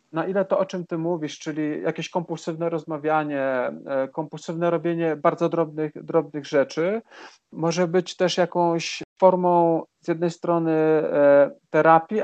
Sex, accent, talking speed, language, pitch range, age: male, native, 125 wpm, Polish, 145-175 Hz, 40-59